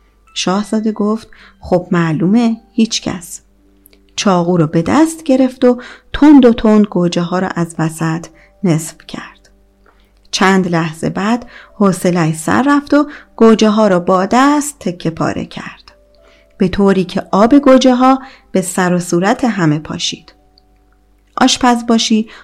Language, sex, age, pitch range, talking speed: Persian, female, 30-49, 170-250 Hz, 135 wpm